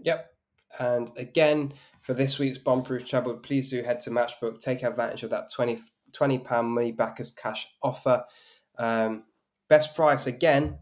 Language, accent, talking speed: English, British, 150 wpm